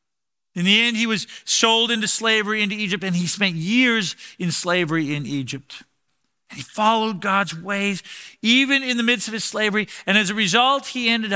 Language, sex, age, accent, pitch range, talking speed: English, male, 40-59, American, 160-210 Hz, 185 wpm